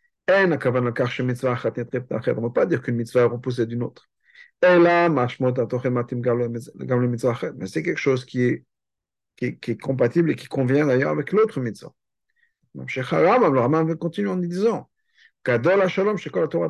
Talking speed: 115 wpm